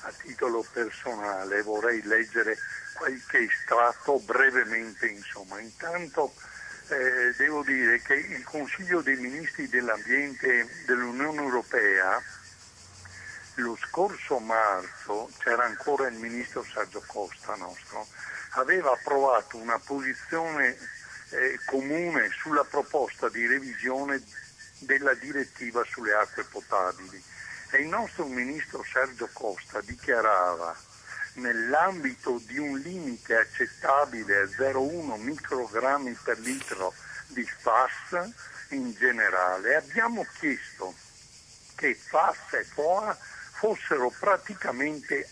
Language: Italian